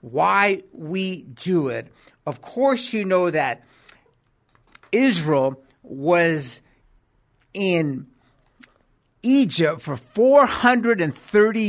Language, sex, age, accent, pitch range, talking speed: English, male, 50-69, American, 145-235 Hz, 75 wpm